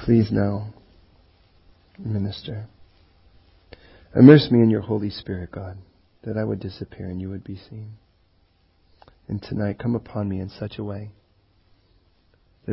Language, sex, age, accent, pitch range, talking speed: English, male, 40-59, American, 90-125 Hz, 135 wpm